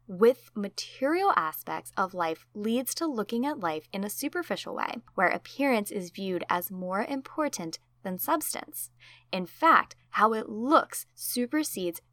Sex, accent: female, American